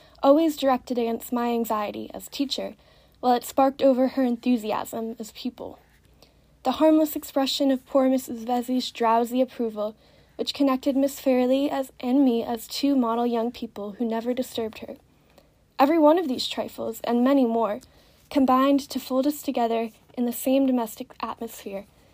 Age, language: 10-29, English